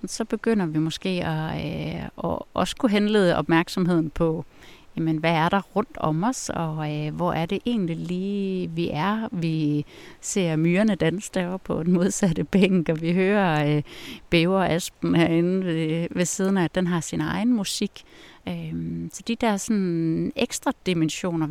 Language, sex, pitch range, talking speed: Danish, female, 160-195 Hz, 165 wpm